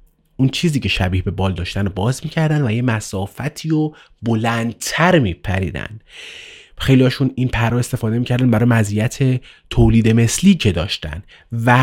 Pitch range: 100-130 Hz